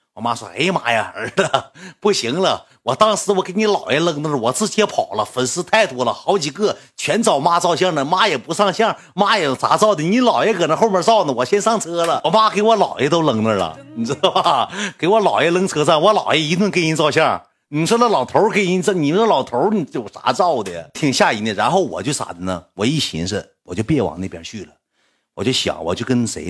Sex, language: male, Chinese